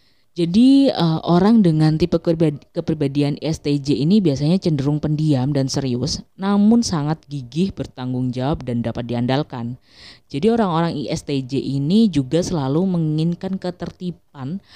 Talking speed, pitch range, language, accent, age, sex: 120 wpm, 130-170 Hz, Indonesian, native, 20-39, female